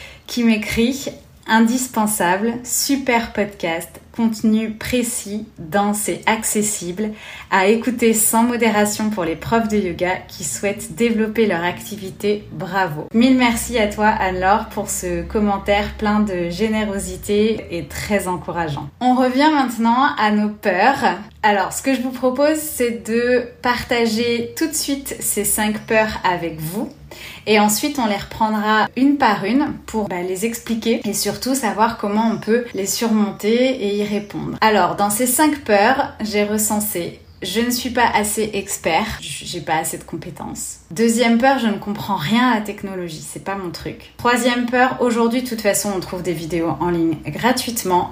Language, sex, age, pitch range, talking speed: French, female, 20-39, 190-235 Hz, 165 wpm